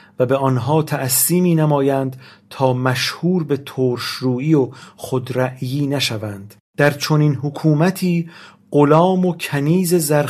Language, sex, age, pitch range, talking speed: Persian, male, 40-59, 130-160 Hz, 115 wpm